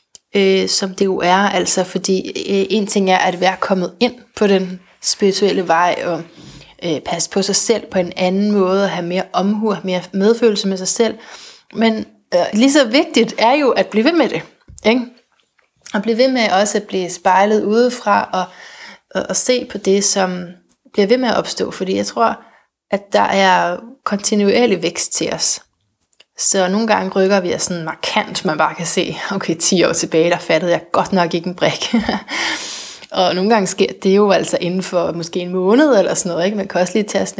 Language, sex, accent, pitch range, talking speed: Danish, female, native, 185-215 Hz, 205 wpm